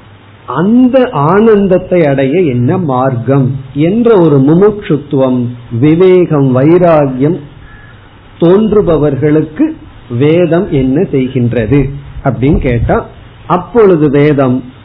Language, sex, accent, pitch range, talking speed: Tamil, male, native, 130-180 Hz, 75 wpm